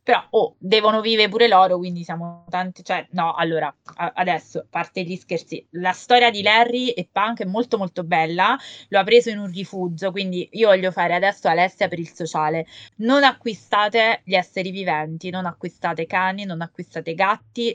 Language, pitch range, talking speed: Italian, 175-200 Hz, 180 wpm